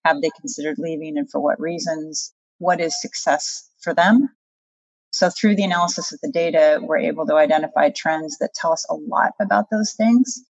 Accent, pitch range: American, 160-220 Hz